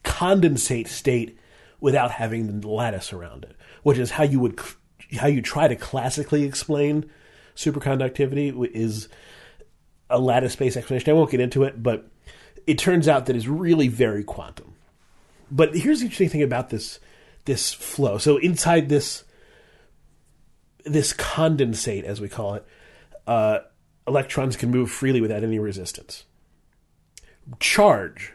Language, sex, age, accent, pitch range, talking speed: English, male, 30-49, American, 110-145 Hz, 140 wpm